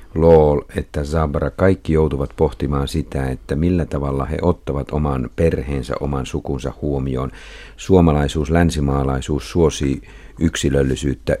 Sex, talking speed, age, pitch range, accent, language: male, 110 wpm, 50-69, 70-85 Hz, native, Finnish